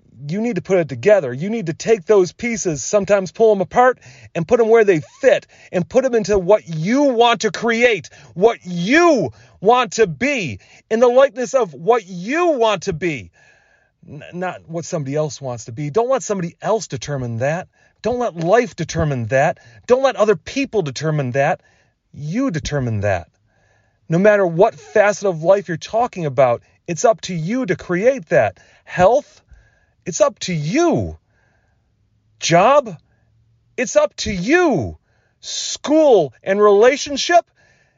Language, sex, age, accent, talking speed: English, male, 30-49, American, 160 wpm